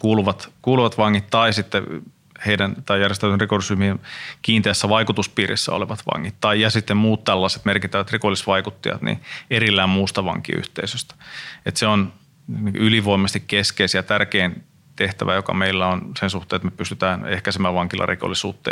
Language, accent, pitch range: Finnish, native, 95-110 Hz